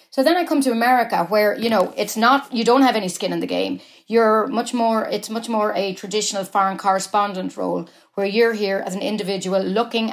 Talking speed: 220 wpm